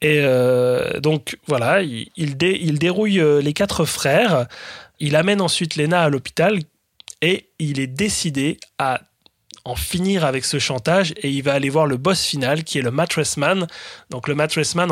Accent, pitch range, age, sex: French, 130-165 Hz, 20-39, male